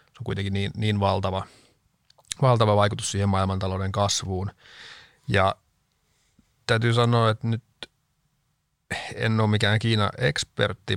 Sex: male